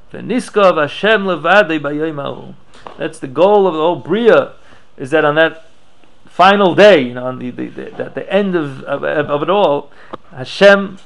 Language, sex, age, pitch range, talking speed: English, male, 40-59, 145-200 Hz, 165 wpm